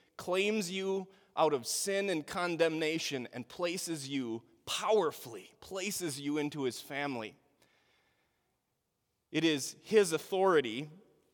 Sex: male